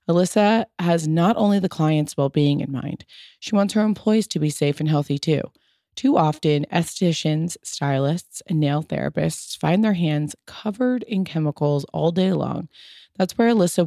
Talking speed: 165 wpm